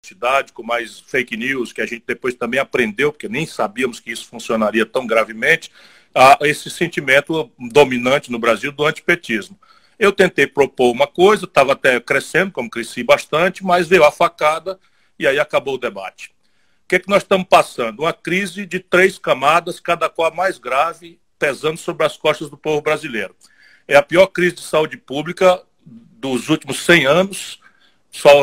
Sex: male